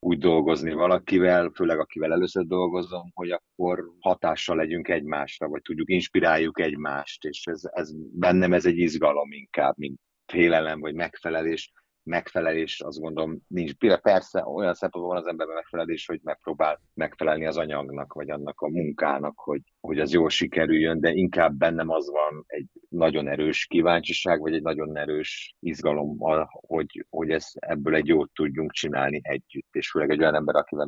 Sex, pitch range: male, 75-90 Hz